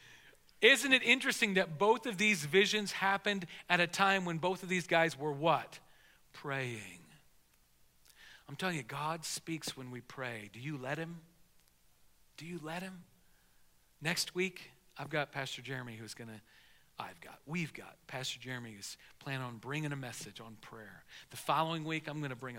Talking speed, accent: 170 wpm, American